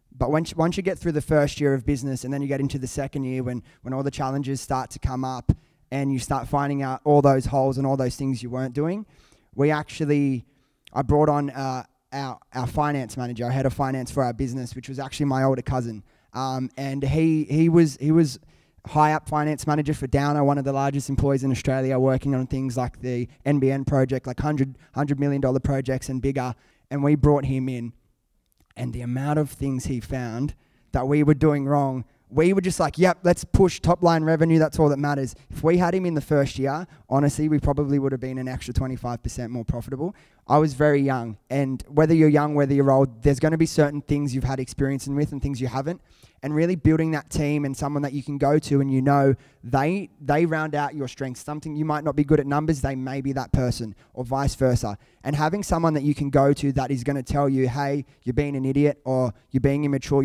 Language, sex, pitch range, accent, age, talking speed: English, male, 130-145 Hz, Australian, 20-39, 235 wpm